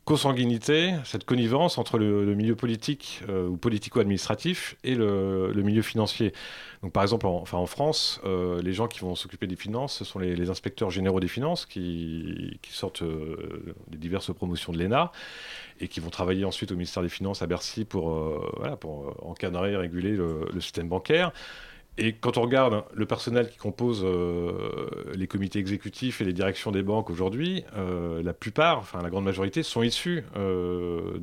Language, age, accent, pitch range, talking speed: French, 30-49, French, 95-120 Hz, 190 wpm